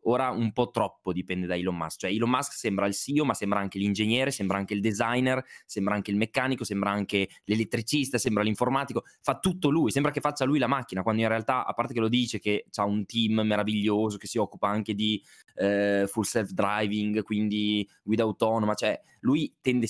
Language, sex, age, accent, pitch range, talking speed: Italian, male, 20-39, native, 105-135 Hz, 200 wpm